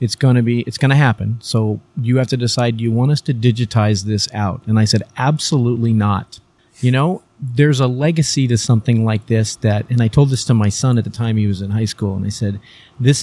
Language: English